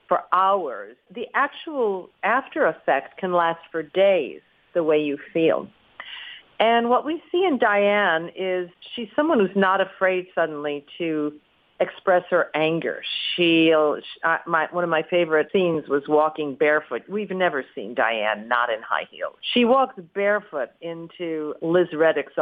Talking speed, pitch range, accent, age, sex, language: 155 wpm, 145-200 Hz, American, 50-69, female, English